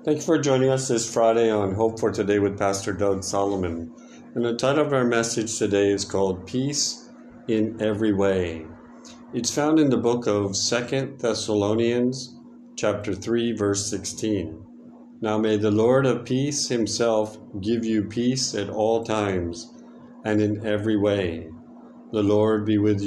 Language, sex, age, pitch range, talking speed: English, male, 50-69, 100-130 Hz, 160 wpm